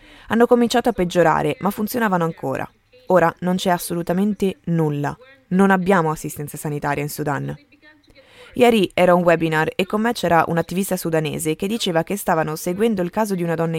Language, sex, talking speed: Italian, female, 170 wpm